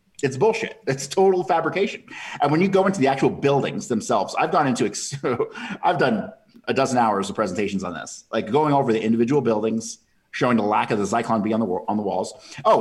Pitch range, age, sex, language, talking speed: 115-180 Hz, 30-49, male, English, 205 wpm